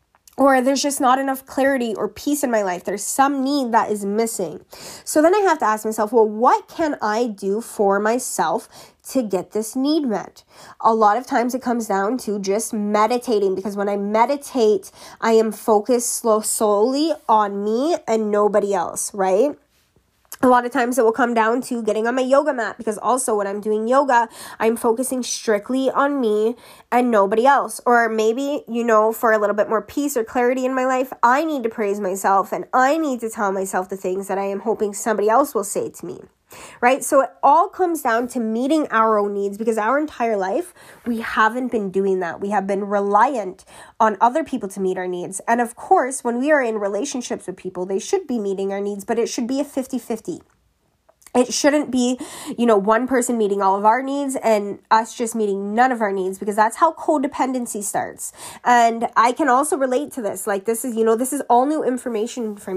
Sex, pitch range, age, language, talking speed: female, 210-260 Hz, 20-39, English, 215 wpm